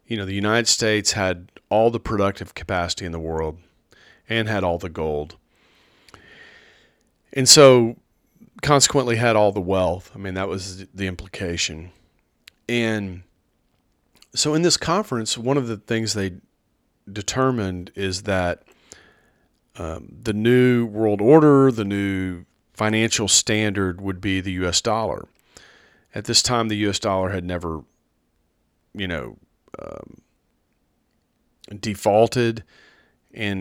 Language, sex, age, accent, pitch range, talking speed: English, male, 40-59, American, 90-110 Hz, 125 wpm